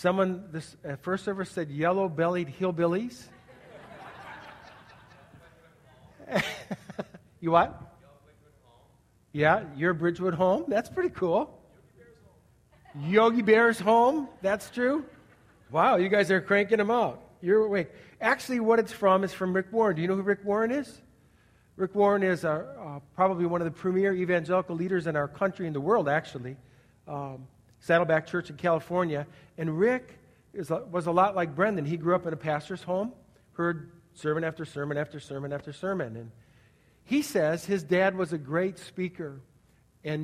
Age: 50-69